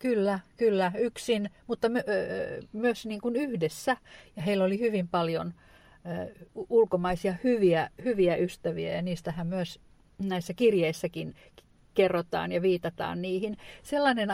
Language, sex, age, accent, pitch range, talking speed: Finnish, female, 50-69, native, 170-210 Hz, 125 wpm